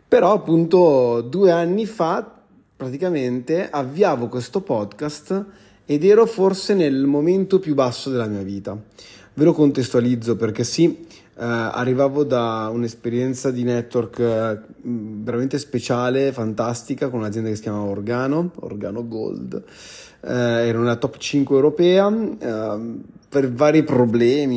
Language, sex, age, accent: Italian, male, 30-49, native